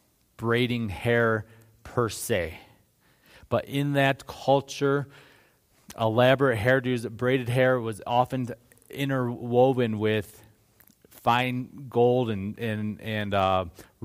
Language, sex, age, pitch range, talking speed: English, male, 30-49, 105-130 Hz, 95 wpm